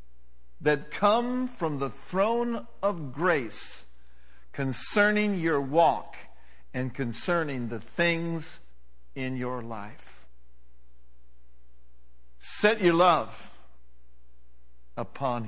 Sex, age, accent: male, 50-69, American